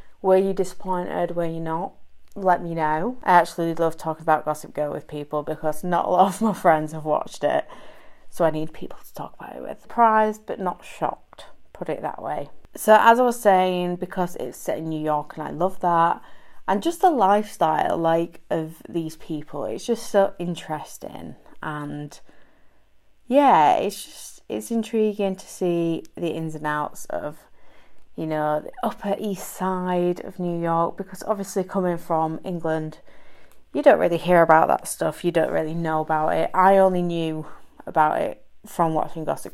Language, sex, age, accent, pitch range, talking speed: English, female, 30-49, British, 155-205 Hz, 180 wpm